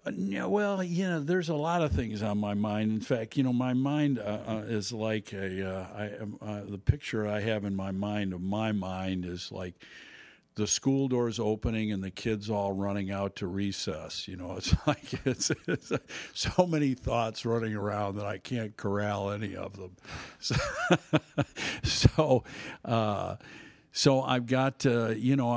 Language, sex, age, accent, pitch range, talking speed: English, male, 60-79, American, 100-125 Hz, 185 wpm